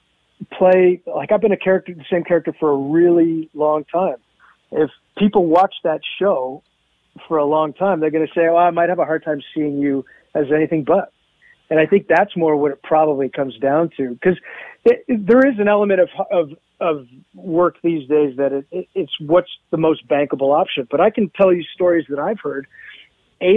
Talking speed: 210 wpm